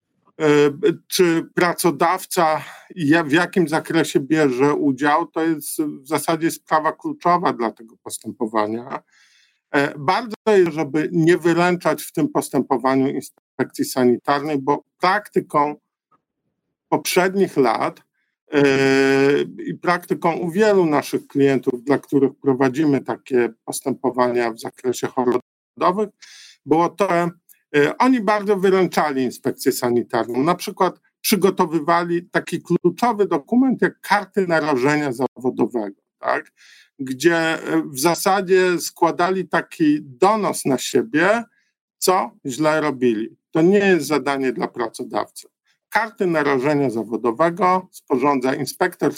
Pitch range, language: 135-185 Hz, Polish